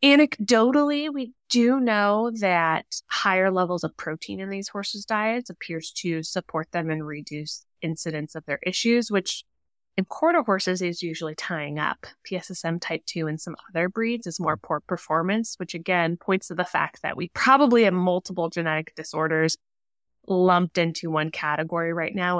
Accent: American